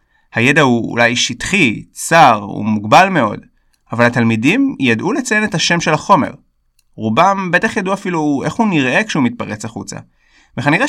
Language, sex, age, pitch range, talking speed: Hebrew, male, 20-39, 110-140 Hz, 150 wpm